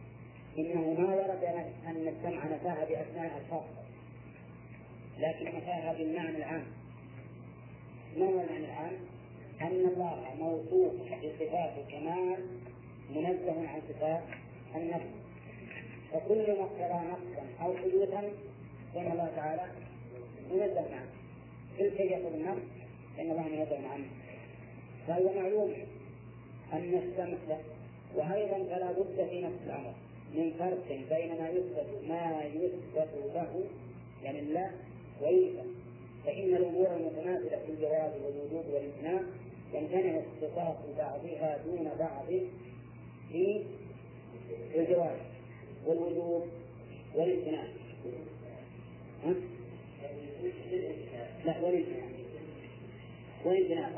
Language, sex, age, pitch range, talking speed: Arabic, male, 40-59, 140-180 Hz, 90 wpm